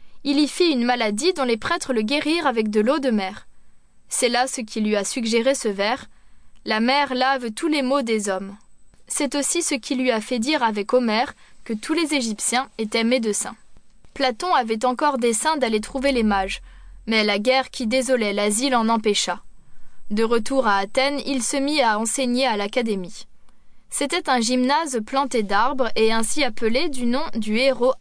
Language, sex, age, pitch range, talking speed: French, female, 20-39, 220-275 Hz, 185 wpm